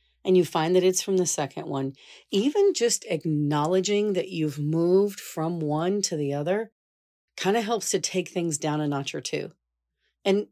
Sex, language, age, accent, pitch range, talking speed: female, English, 40-59, American, 150-190 Hz, 185 wpm